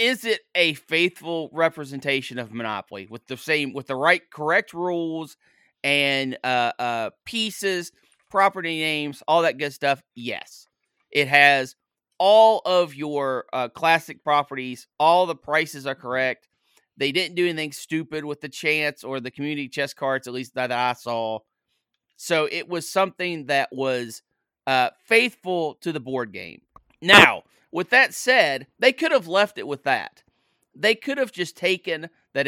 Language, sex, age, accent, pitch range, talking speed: English, male, 30-49, American, 135-180 Hz, 160 wpm